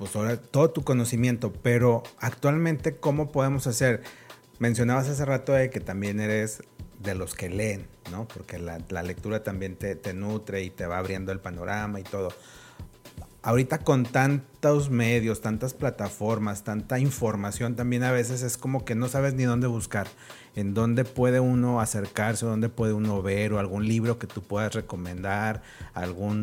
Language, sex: Spanish, male